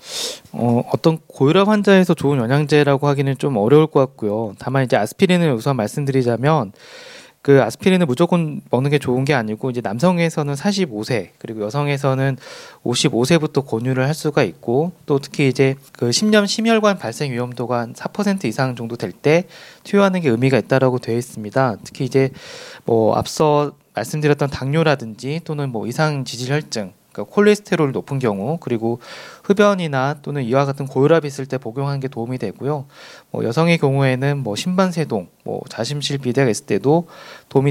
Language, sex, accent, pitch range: Korean, male, native, 125-155 Hz